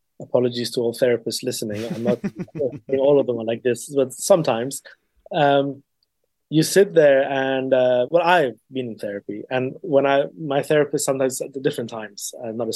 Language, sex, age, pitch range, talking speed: English, male, 20-39, 125-150 Hz, 185 wpm